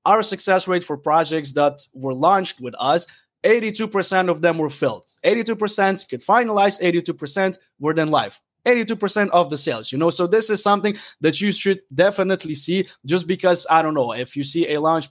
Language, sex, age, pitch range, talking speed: English, male, 20-39, 155-195 Hz, 185 wpm